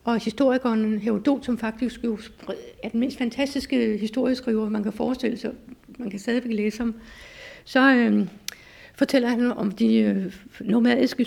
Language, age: Danish, 60-79